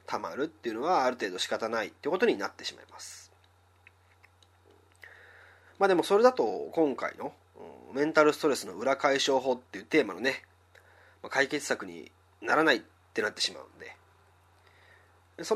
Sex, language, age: male, Japanese, 30-49